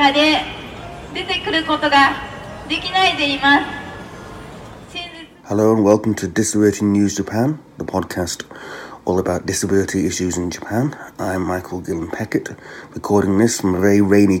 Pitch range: 85-110 Hz